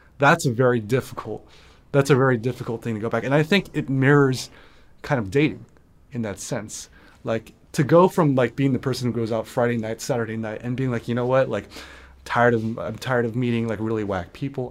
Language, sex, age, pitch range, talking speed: English, male, 20-39, 110-140 Hz, 225 wpm